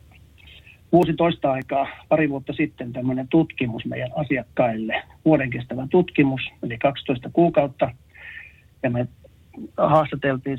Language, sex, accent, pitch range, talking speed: Finnish, male, native, 125-155 Hz, 95 wpm